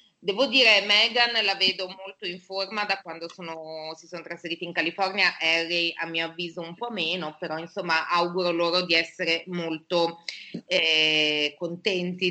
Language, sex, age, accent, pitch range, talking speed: Italian, female, 30-49, native, 165-195 Hz, 155 wpm